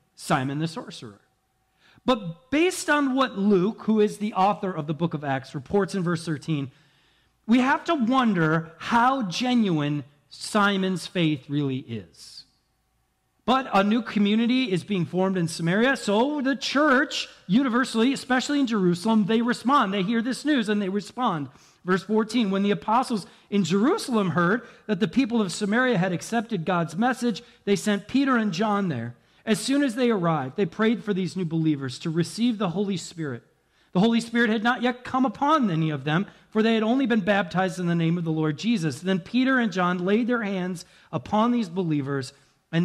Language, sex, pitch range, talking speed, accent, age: English, male, 160-225 Hz, 180 wpm, American, 40-59